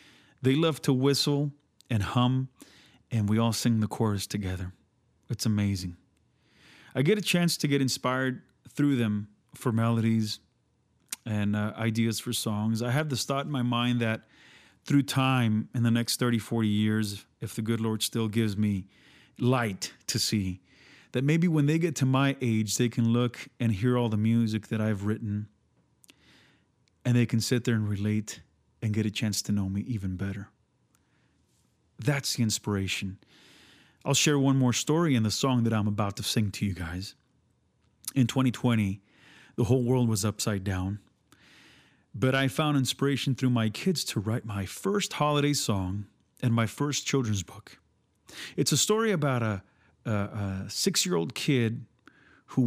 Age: 30-49